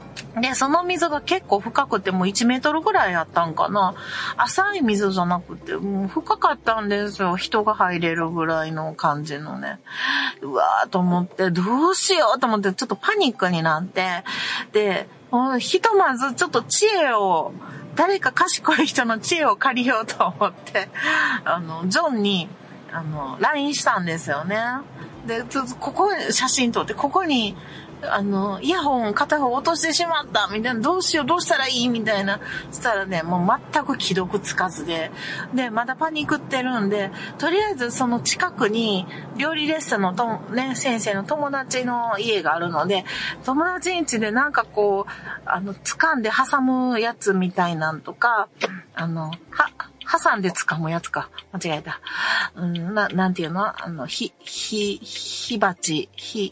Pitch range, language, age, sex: 185-280 Hz, Japanese, 40-59, female